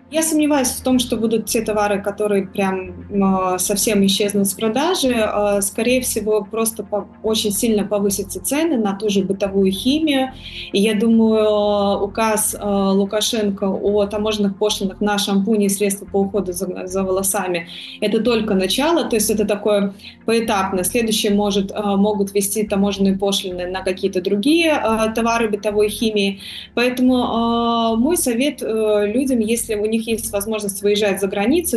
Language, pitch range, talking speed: Russian, 200-240 Hz, 140 wpm